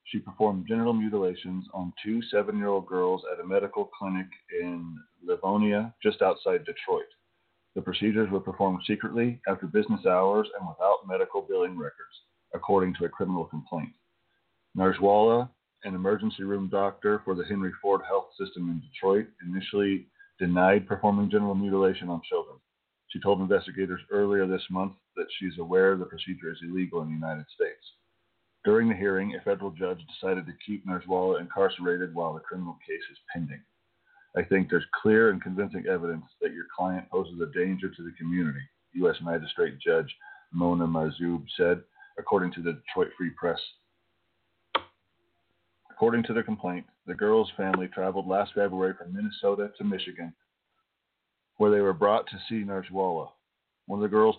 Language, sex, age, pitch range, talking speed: English, male, 30-49, 90-110 Hz, 155 wpm